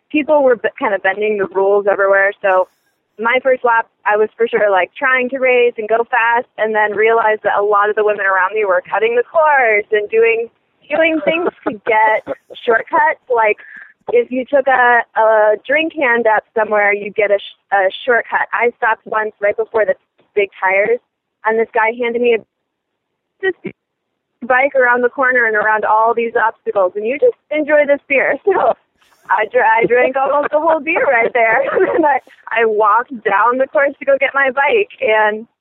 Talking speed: 190 wpm